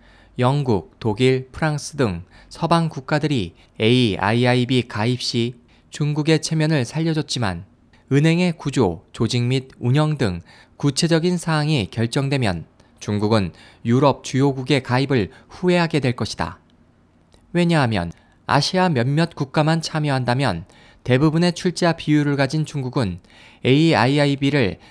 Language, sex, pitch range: Korean, male, 115-155 Hz